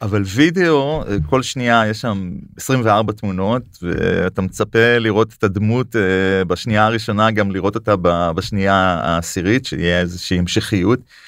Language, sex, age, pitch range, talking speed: Hebrew, male, 30-49, 95-120 Hz, 120 wpm